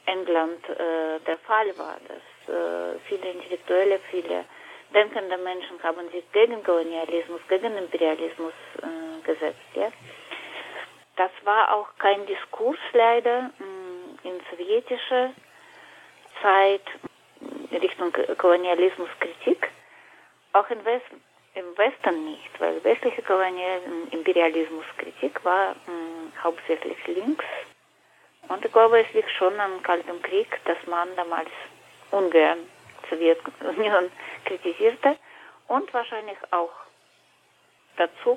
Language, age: German, 30-49